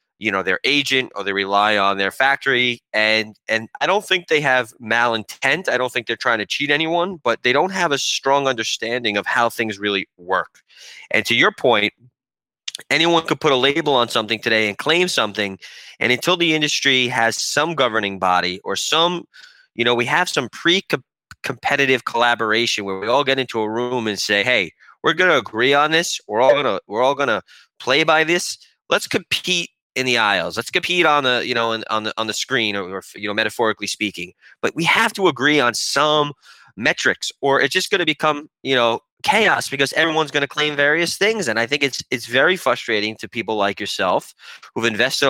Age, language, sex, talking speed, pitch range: 20-39, English, male, 210 wpm, 110-150 Hz